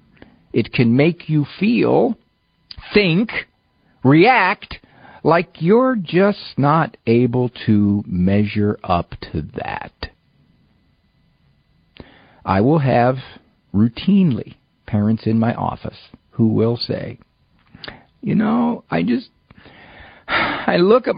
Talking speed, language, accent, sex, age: 100 wpm, English, American, male, 50-69